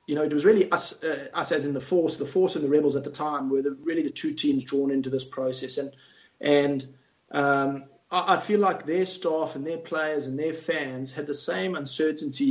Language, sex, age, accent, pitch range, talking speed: English, male, 30-49, Australian, 135-170 Hz, 235 wpm